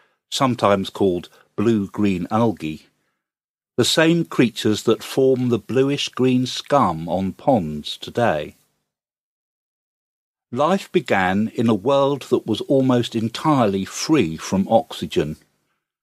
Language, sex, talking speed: English, male, 100 wpm